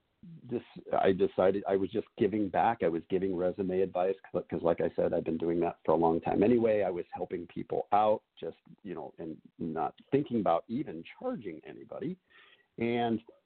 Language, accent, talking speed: English, American, 185 wpm